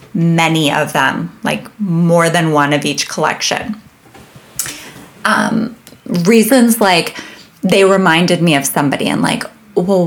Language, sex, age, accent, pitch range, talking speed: English, female, 20-39, American, 160-230 Hz, 125 wpm